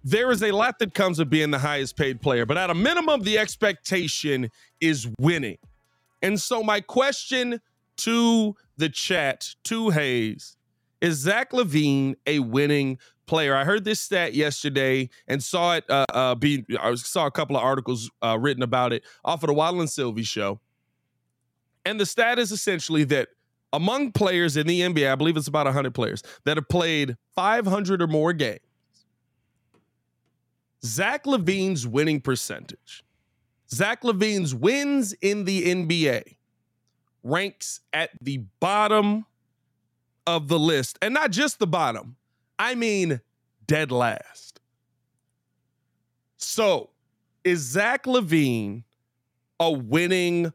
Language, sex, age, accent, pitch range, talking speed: English, male, 30-49, American, 125-195 Hz, 140 wpm